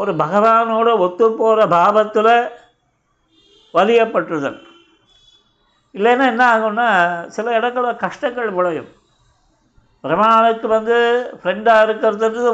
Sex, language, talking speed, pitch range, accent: male, Tamil, 80 wpm, 175-220 Hz, native